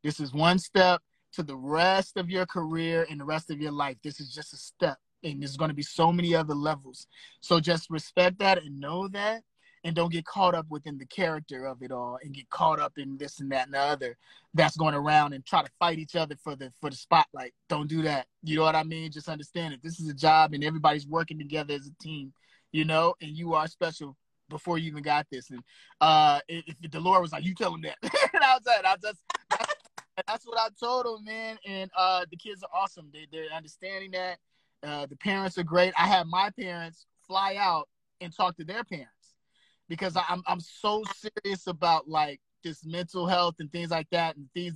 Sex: male